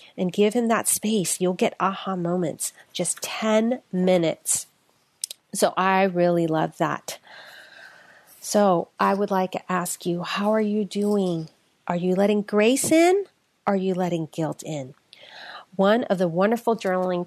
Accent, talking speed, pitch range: American, 150 wpm, 175-230 Hz